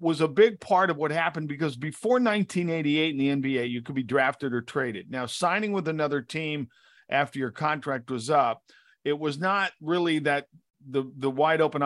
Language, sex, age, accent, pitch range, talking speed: English, male, 50-69, American, 135-170 Hz, 190 wpm